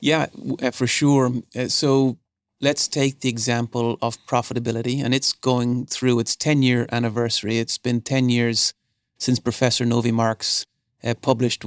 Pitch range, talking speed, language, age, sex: 115-130 Hz, 130 wpm, English, 30-49, male